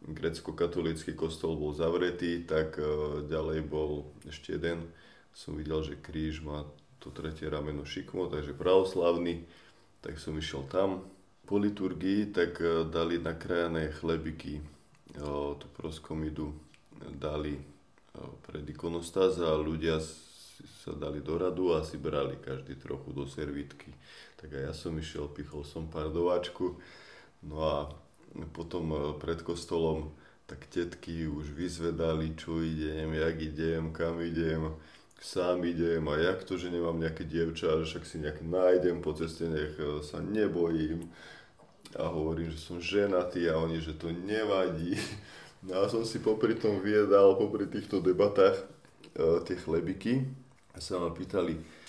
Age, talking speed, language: 20-39, 135 wpm, Slovak